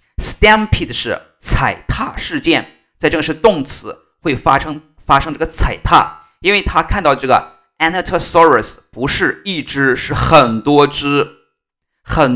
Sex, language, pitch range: male, Chinese, 95-155 Hz